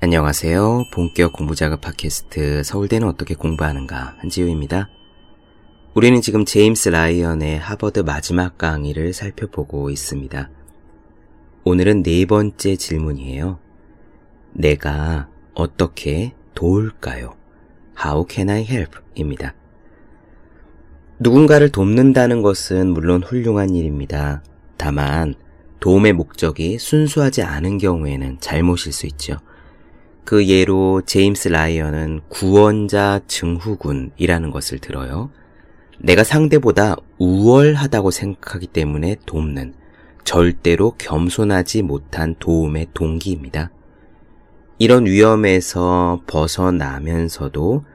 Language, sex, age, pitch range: Korean, male, 30-49, 75-100 Hz